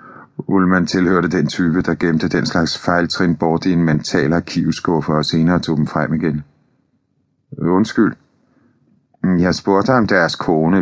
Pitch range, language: 80-95 Hz, Danish